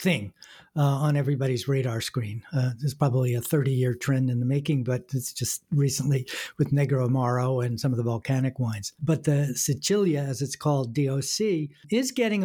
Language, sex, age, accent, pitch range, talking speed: English, male, 60-79, American, 135-165 Hz, 180 wpm